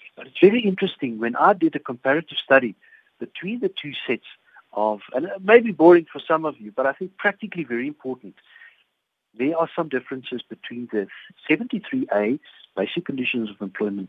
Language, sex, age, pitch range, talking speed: English, male, 50-69, 110-155 Hz, 175 wpm